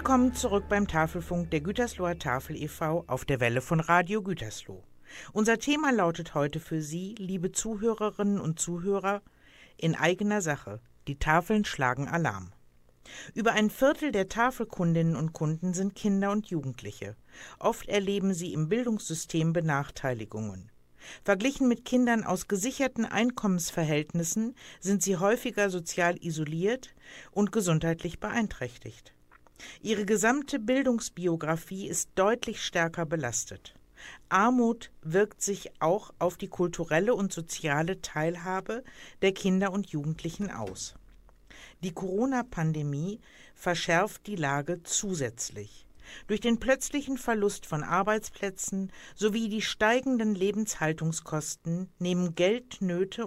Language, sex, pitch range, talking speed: German, female, 155-210 Hz, 115 wpm